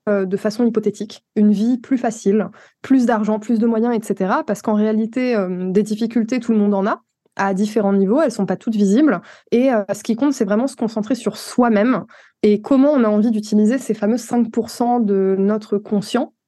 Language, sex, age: French, female, 20-39